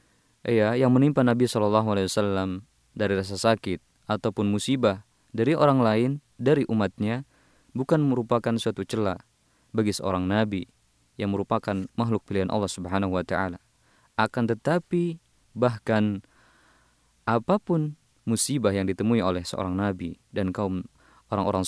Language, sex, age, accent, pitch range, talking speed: Indonesian, male, 20-39, native, 95-120 Hz, 120 wpm